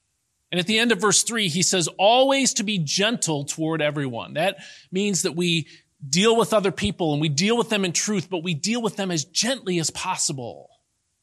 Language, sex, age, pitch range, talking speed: English, male, 40-59, 130-200 Hz, 210 wpm